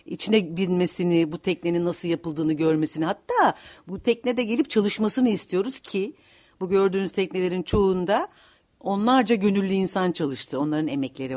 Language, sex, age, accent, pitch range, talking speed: Turkish, female, 60-79, native, 145-190 Hz, 130 wpm